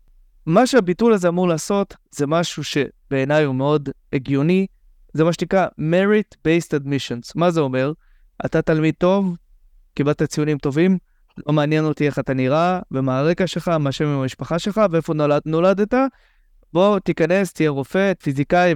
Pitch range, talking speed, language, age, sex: 140-180 Hz, 155 wpm, Hebrew, 20-39, male